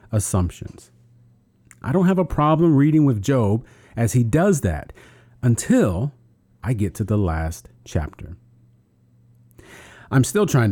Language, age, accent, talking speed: English, 40-59, American, 130 wpm